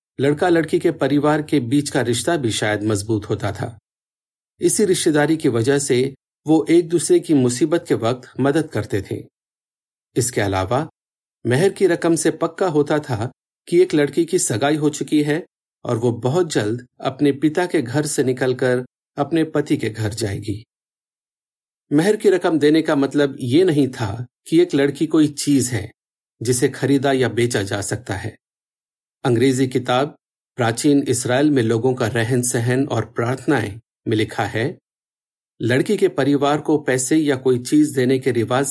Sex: male